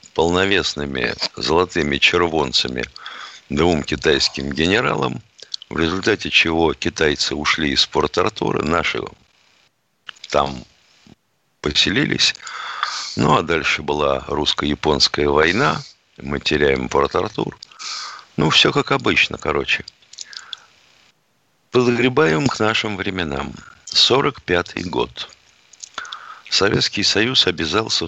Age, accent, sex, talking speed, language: 50-69, native, male, 85 wpm, Russian